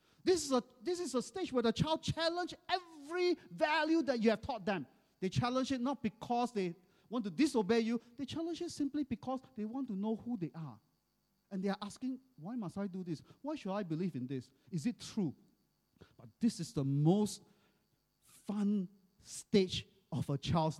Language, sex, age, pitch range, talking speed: English, male, 40-59, 155-220 Hz, 190 wpm